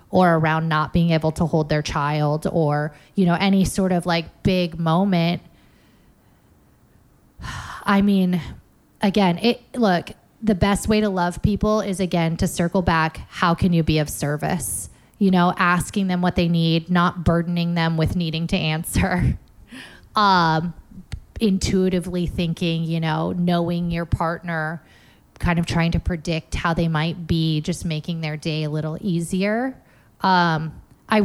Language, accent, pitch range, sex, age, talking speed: English, American, 165-190 Hz, female, 20-39, 155 wpm